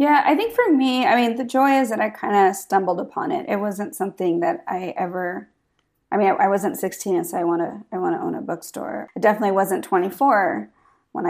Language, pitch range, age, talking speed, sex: English, 185-275 Hz, 20-39, 240 wpm, female